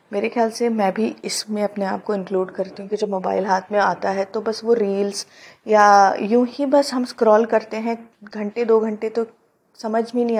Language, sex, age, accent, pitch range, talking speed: Hindi, female, 30-49, native, 190-220 Hz, 220 wpm